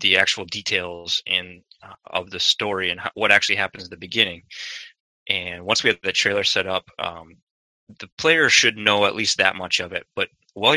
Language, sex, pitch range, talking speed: English, male, 95-110 Hz, 200 wpm